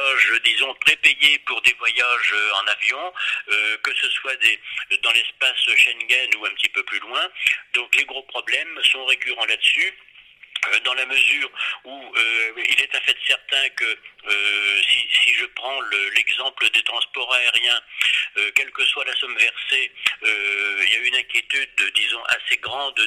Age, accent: 50-69, French